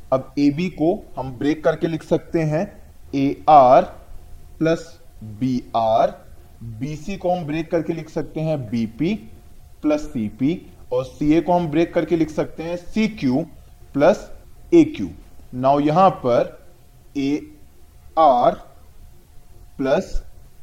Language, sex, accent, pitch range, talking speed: Hindi, male, native, 130-170 Hz, 135 wpm